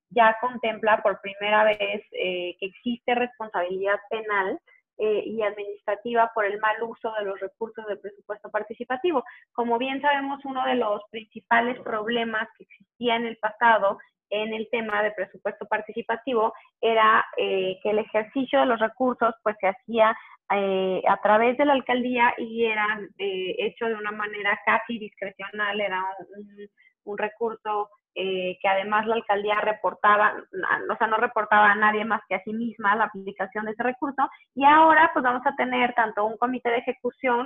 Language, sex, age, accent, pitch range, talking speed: Spanish, female, 20-39, Mexican, 200-240 Hz, 170 wpm